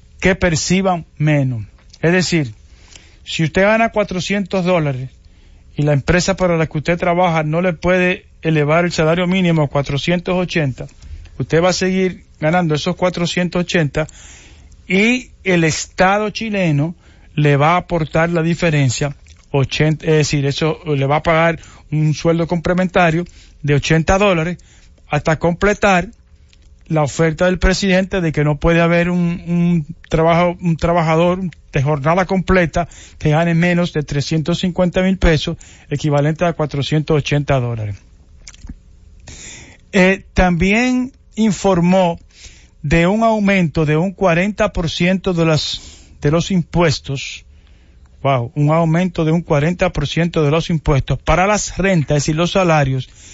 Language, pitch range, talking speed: English, 145-180 Hz, 130 wpm